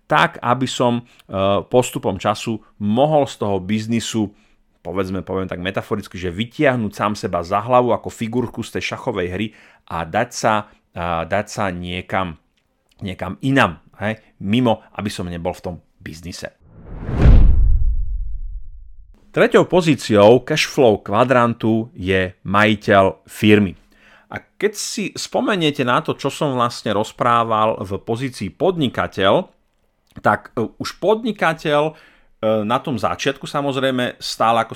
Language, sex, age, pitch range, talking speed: Slovak, male, 30-49, 100-135 Hz, 120 wpm